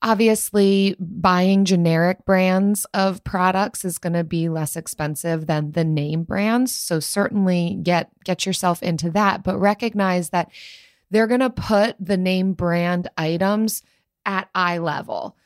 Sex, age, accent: female, 20-39, American